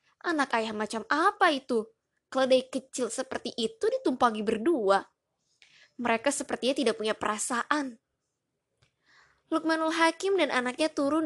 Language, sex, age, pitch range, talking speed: Indonesian, female, 20-39, 215-285 Hz, 110 wpm